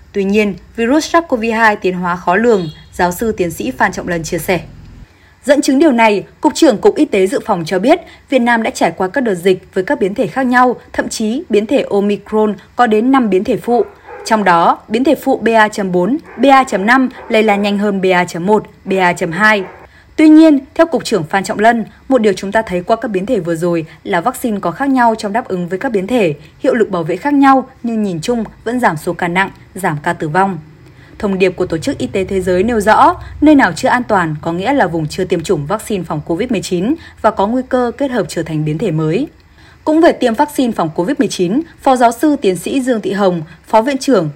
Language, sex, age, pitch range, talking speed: Vietnamese, female, 20-39, 185-250 Hz, 230 wpm